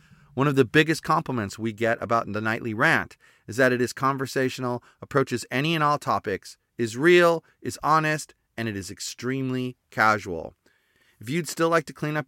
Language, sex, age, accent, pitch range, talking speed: English, male, 30-49, American, 110-145 Hz, 180 wpm